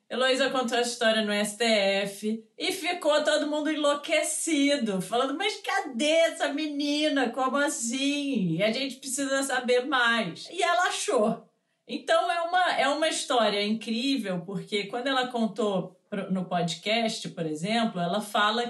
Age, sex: 30-49, female